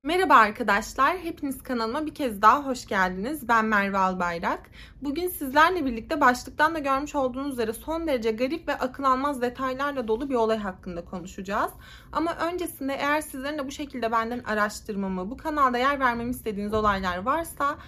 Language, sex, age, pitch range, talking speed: Turkish, female, 30-49, 225-310 Hz, 160 wpm